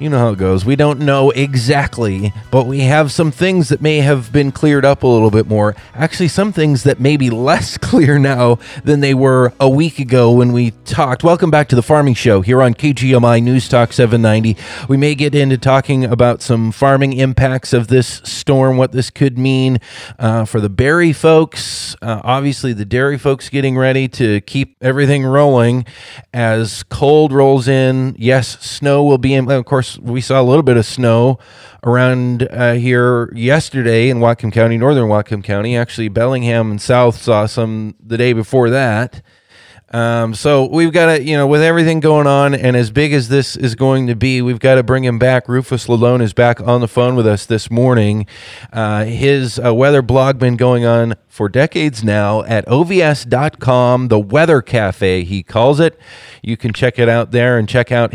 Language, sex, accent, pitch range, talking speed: English, male, American, 115-135 Hz, 195 wpm